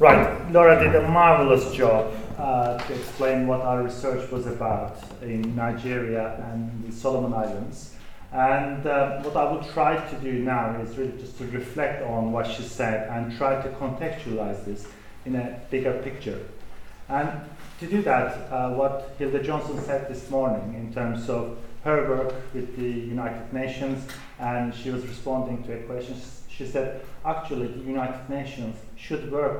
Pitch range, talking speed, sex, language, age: 115-145 Hz, 165 wpm, male, English, 40-59